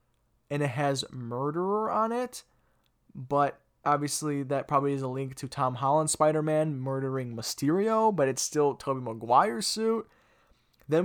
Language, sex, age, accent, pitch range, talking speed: English, male, 20-39, American, 125-155 Hz, 140 wpm